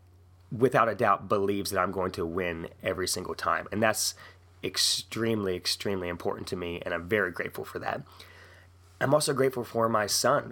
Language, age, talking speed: English, 20-39, 175 wpm